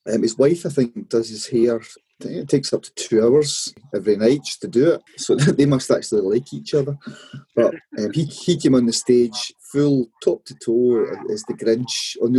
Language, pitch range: English, 120-150 Hz